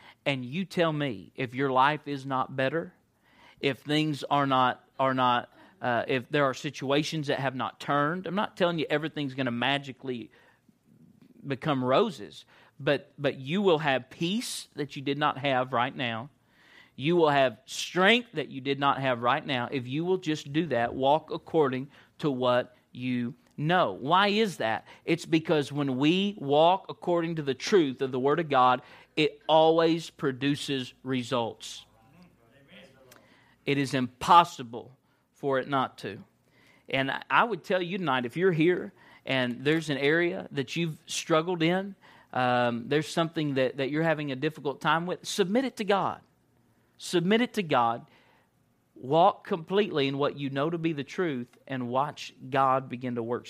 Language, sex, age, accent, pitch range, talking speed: English, male, 40-59, American, 130-160 Hz, 170 wpm